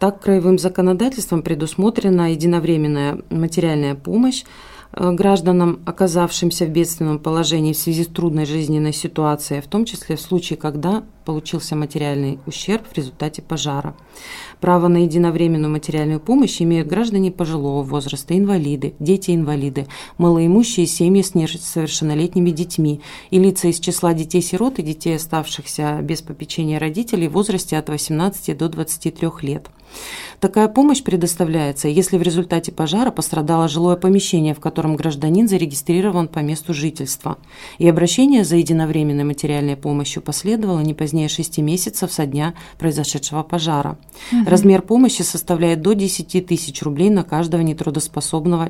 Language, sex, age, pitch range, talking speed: Russian, female, 30-49, 155-185 Hz, 130 wpm